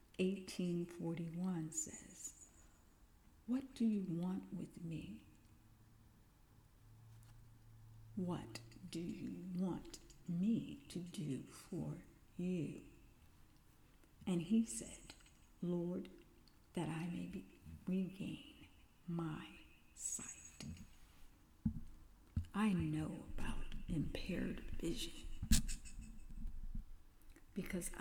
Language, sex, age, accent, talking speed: English, female, 60-79, American, 70 wpm